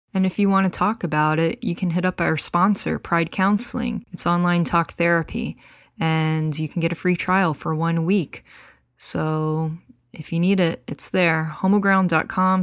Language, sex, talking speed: English, female, 180 wpm